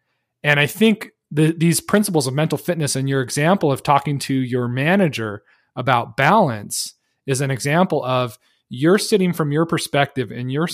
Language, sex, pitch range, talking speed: English, male, 135-175 Hz, 160 wpm